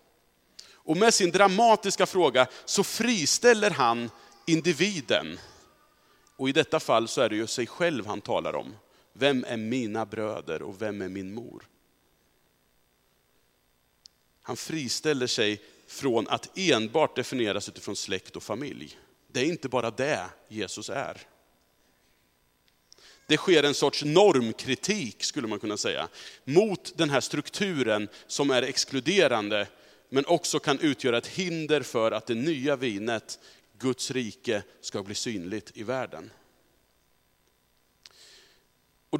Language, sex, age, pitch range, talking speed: Swedish, male, 40-59, 110-160 Hz, 130 wpm